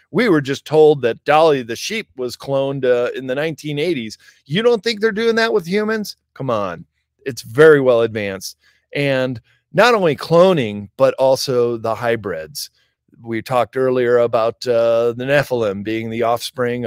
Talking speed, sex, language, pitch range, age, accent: 165 wpm, male, English, 115-145 Hz, 40-59, American